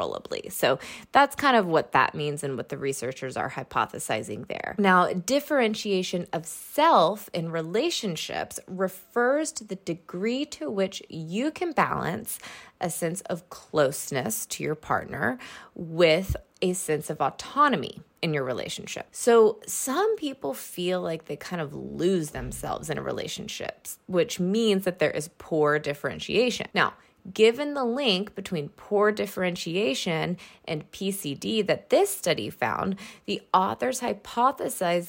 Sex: female